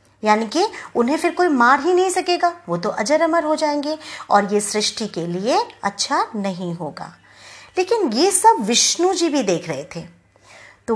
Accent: native